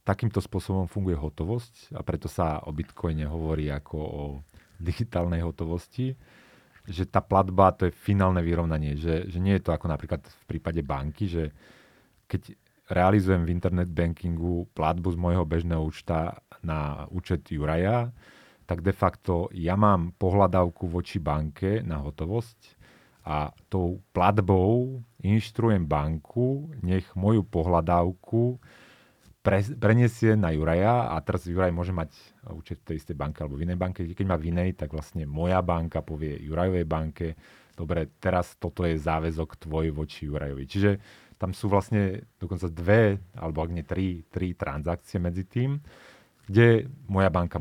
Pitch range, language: 80-100 Hz, Slovak